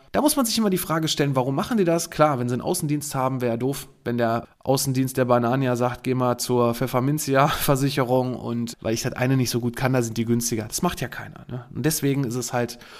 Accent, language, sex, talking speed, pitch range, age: German, German, male, 250 wpm, 120-145 Hz, 20-39